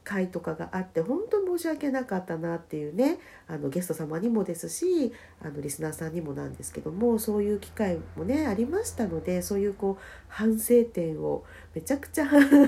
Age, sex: 50-69, female